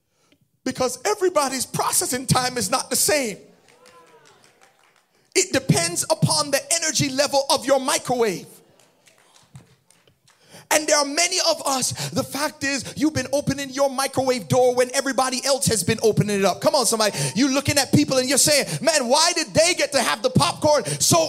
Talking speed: 170 wpm